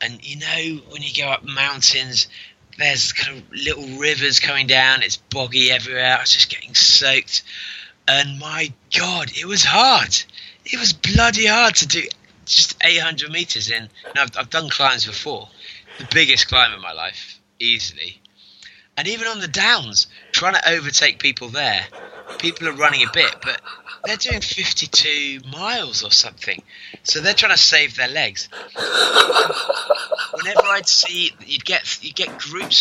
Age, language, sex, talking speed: 20-39, English, male, 165 wpm